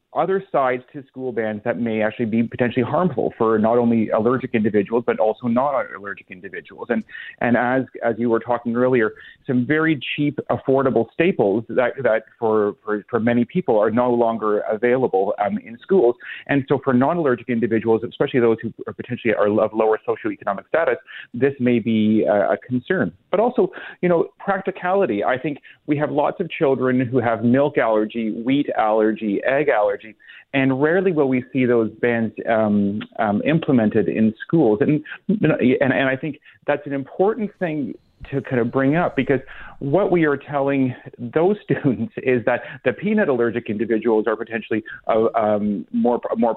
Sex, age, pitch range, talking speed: male, 30-49, 110-140 Hz, 175 wpm